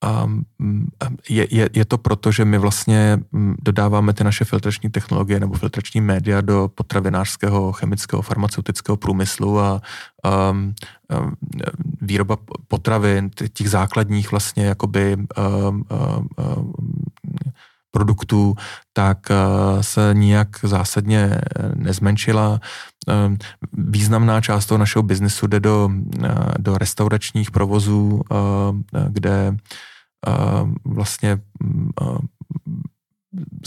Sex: male